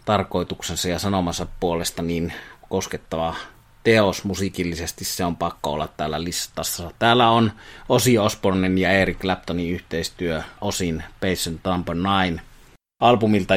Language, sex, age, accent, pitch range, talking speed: Finnish, male, 30-49, native, 90-100 Hz, 115 wpm